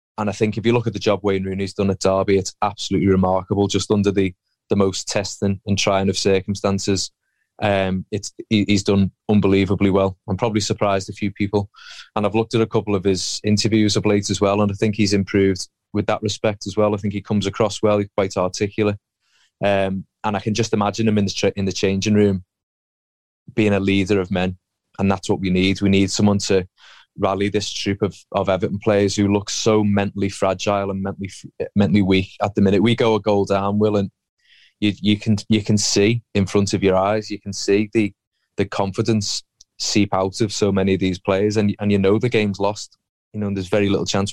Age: 20-39